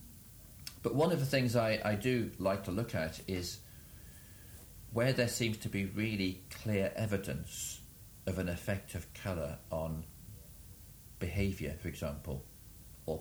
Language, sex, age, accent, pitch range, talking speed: English, male, 50-69, British, 85-105 Hz, 140 wpm